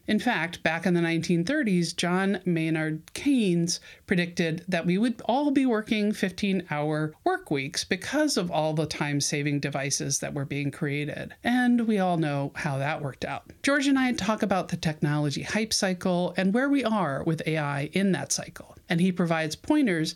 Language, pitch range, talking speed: English, 155-210 Hz, 180 wpm